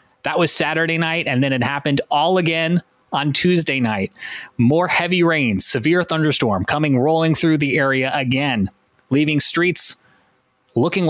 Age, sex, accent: 20-39, male, American